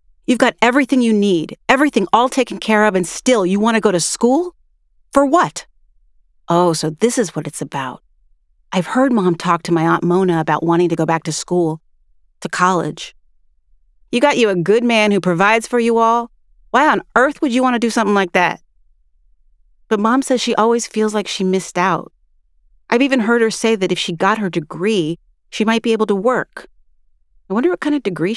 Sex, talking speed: female, 210 wpm